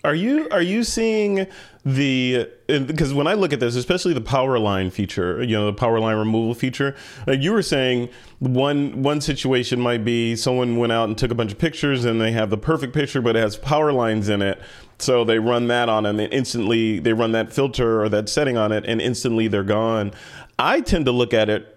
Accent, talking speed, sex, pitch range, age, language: American, 230 wpm, male, 110-135 Hz, 30-49, English